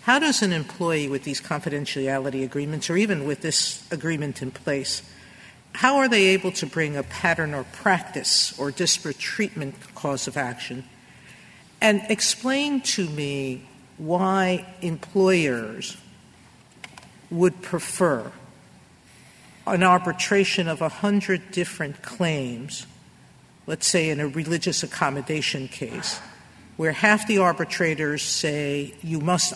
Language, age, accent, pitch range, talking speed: English, 50-69, American, 145-185 Hz, 120 wpm